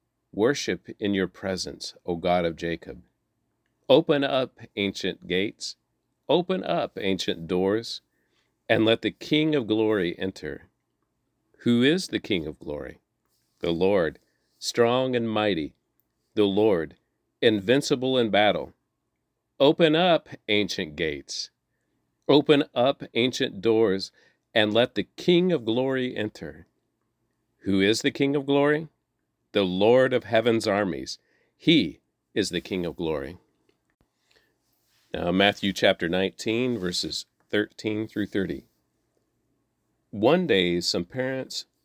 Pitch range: 95-130 Hz